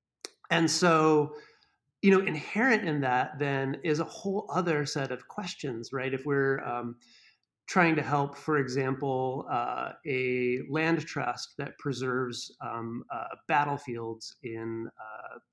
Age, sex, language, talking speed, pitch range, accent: 30-49, male, English, 135 wpm, 125-155 Hz, American